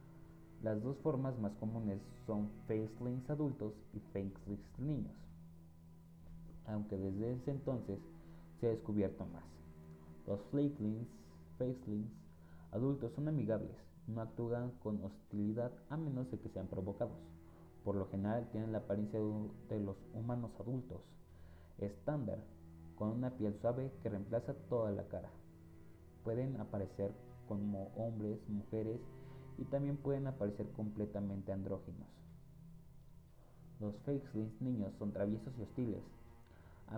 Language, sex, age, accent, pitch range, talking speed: Spanish, male, 30-49, Mexican, 85-120 Hz, 120 wpm